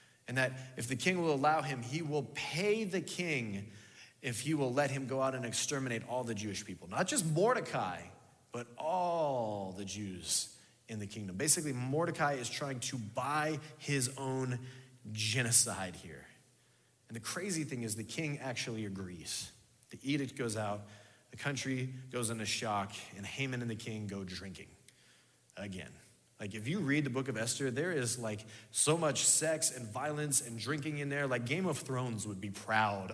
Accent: American